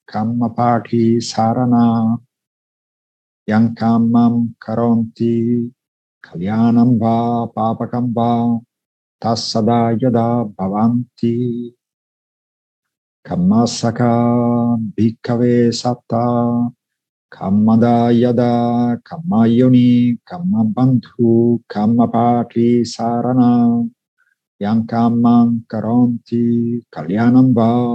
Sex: male